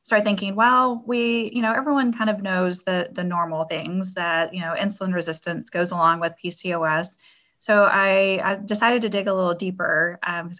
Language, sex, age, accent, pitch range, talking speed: English, female, 20-39, American, 165-200 Hz, 185 wpm